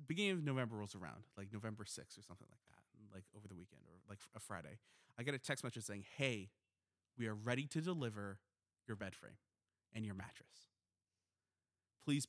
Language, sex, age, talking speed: English, male, 20-39, 190 wpm